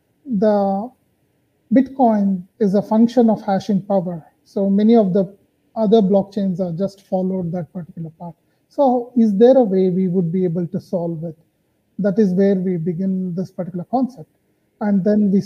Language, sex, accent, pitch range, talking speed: English, male, Indian, 190-225 Hz, 165 wpm